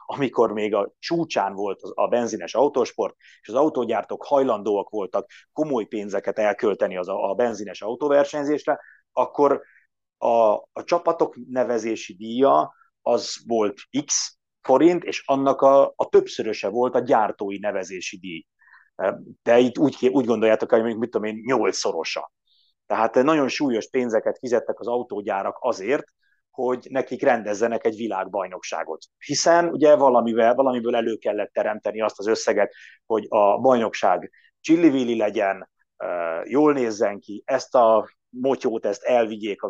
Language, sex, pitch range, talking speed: Hungarian, male, 110-140 Hz, 130 wpm